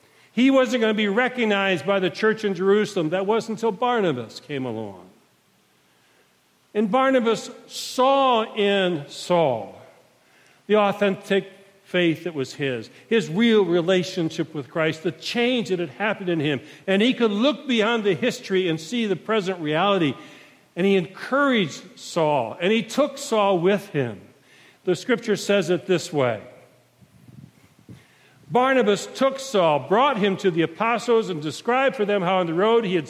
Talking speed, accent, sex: 155 wpm, American, male